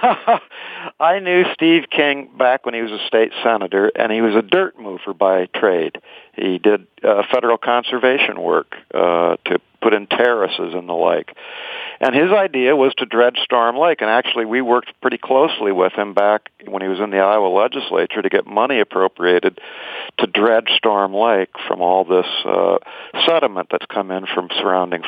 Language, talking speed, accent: English, 180 wpm, American